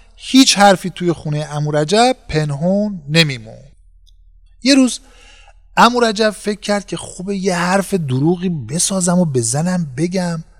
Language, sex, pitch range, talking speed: Persian, male, 150-225 Hz, 120 wpm